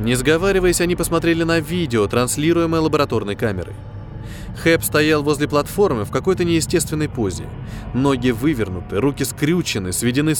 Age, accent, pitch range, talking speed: 20-39, native, 110-165 Hz, 125 wpm